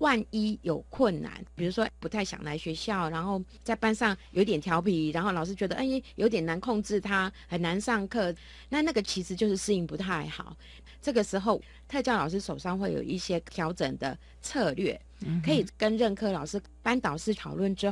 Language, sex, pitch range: Chinese, female, 165-220 Hz